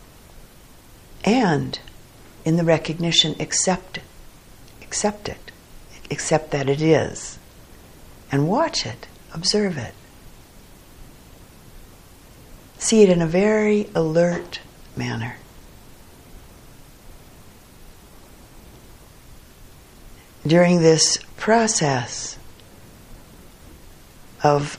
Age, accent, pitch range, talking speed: 60-79, American, 135-175 Hz, 65 wpm